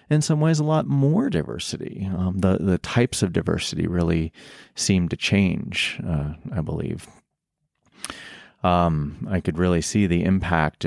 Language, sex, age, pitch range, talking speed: English, male, 30-49, 80-95 Hz, 150 wpm